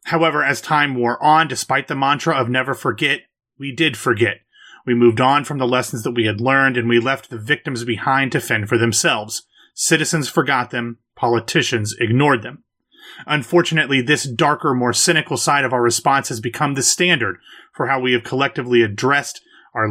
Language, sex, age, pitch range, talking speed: English, male, 30-49, 120-145 Hz, 180 wpm